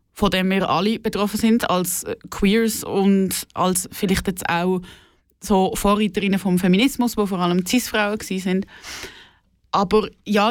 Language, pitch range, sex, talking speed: German, 185-215 Hz, female, 145 wpm